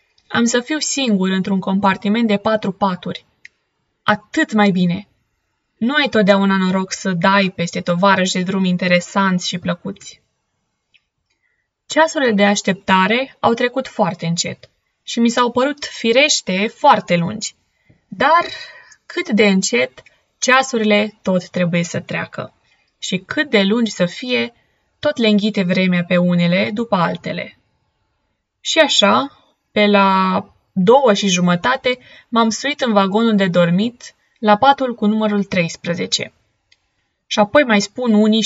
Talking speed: 135 wpm